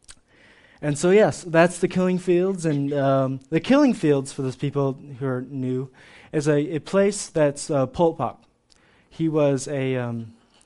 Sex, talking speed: male, 165 wpm